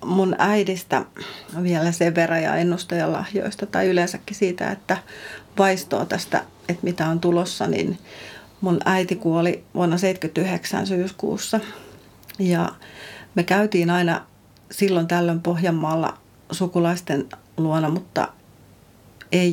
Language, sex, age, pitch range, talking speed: Finnish, female, 40-59, 170-190 Hz, 110 wpm